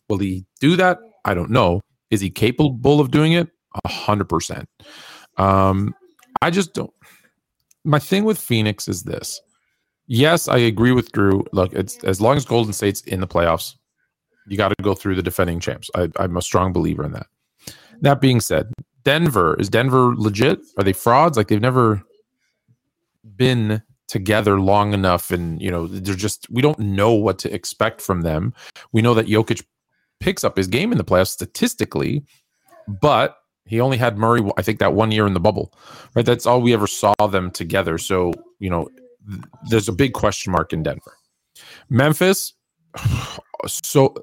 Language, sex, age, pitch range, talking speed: English, male, 40-59, 95-130 Hz, 175 wpm